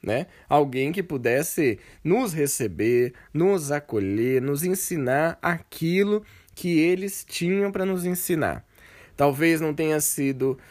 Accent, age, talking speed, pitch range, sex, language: Brazilian, 20-39, 120 wpm, 130-195 Hz, male, Portuguese